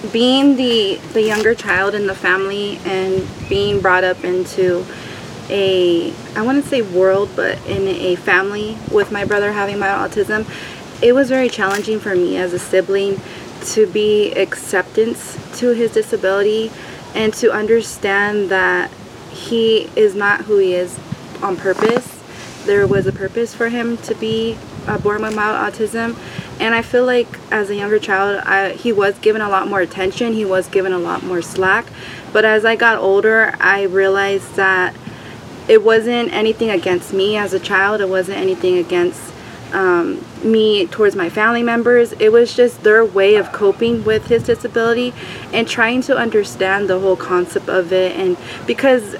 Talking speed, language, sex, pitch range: 170 wpm, English, female, 190-230 Hz